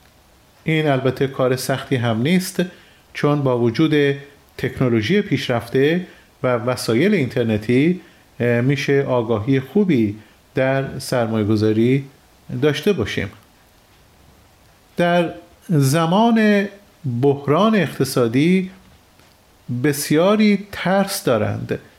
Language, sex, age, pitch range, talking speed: Persian, male, 40-59, 125-165 Hz, 80 wpm